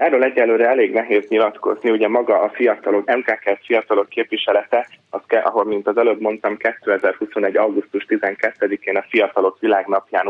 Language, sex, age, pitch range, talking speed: Hungarian, male, 30-49, 100-125 Hz, 140 wpm